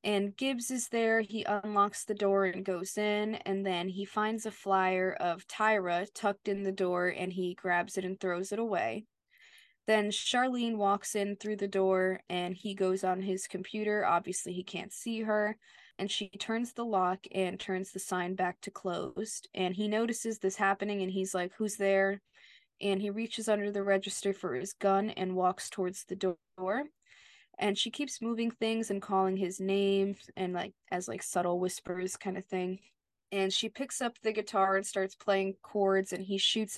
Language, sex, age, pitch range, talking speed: English, female, 20-39, 185-210 Hz, 190 wpm